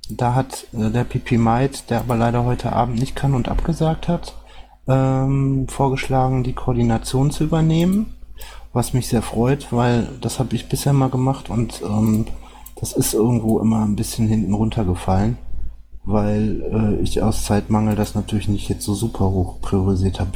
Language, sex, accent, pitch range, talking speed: German, male, German, 100-115 Hz, 170 wpm